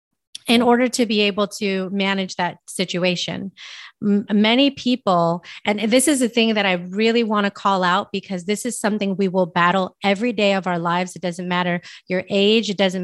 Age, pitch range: 30-49, 180-210 Hz